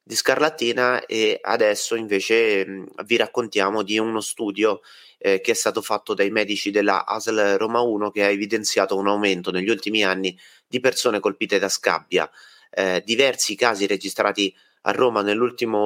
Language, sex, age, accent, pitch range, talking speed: Italian, male, 30-49, native, 95-115 Hz, 155 wpm